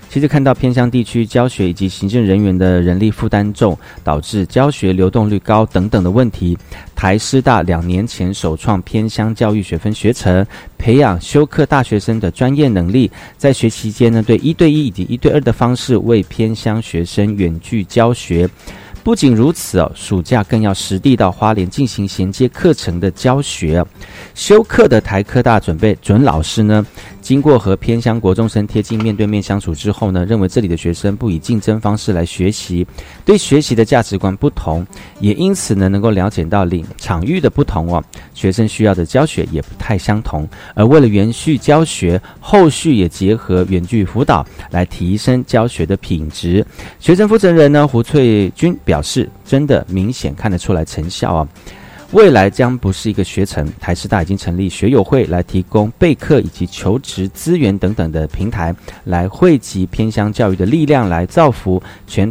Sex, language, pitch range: male, Chinese, 90-120 Hz